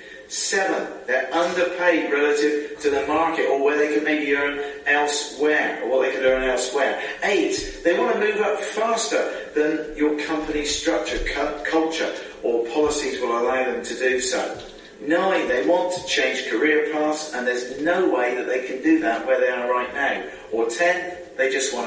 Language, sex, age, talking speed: English, male, 40-59, 180 wpm